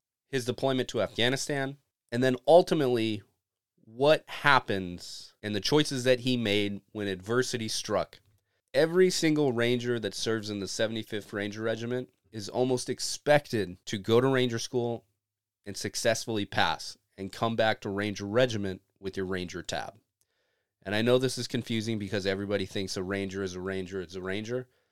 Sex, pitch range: male, 100-125 Hz